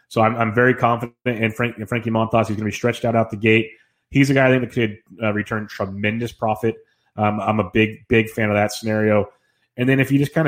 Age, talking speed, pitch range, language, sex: 30-49, 240 wpm, 110-130 Hz, English, male